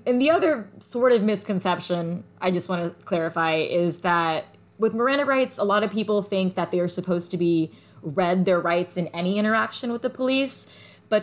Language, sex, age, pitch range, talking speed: English, female, 20-39, 165-210 Hz, 200 wpm